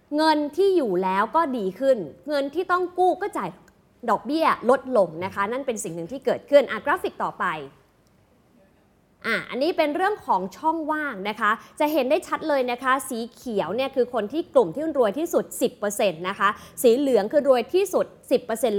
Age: 20-39